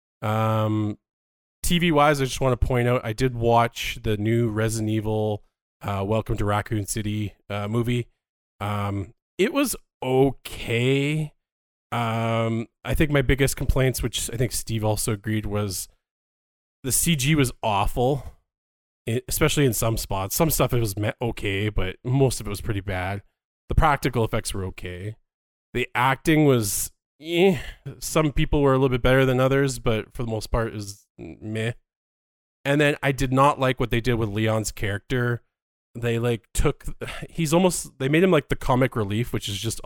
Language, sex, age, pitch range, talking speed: English, male, 20-39, 105-130 Hz, 170 wpm